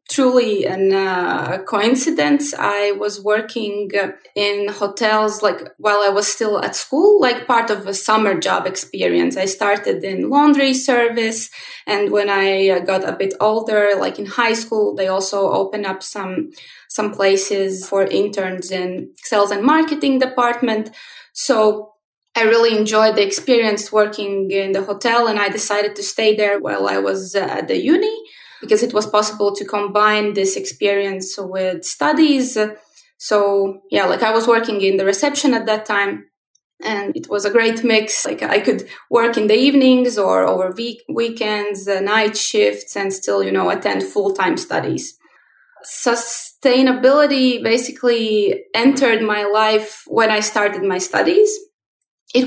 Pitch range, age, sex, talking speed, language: 200-235 Hz, 20-39, female, 155 wpm, English